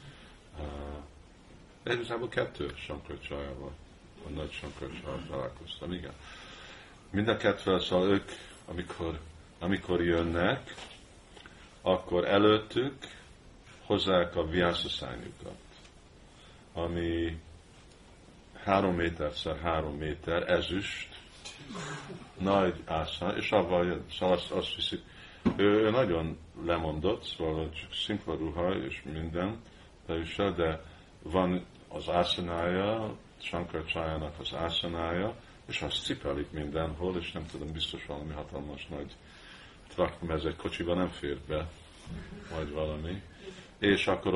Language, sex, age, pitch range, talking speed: Hungarian, male, 50-69, 75-90 Hz, 95 wpm